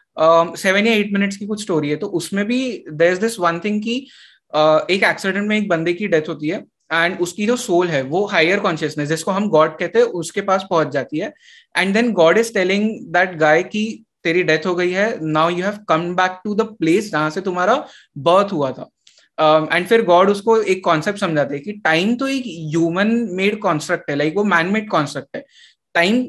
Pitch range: 170-225 Hz